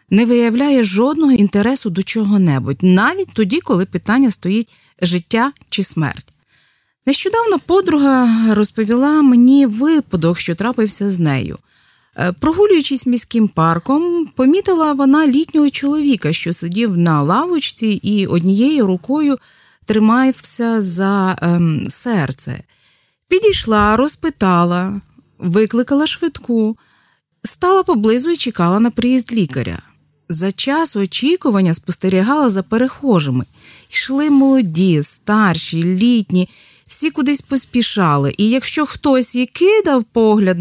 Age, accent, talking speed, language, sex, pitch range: 30-49, native, 105 wpm, Ukrainian, female, 185-265 Hz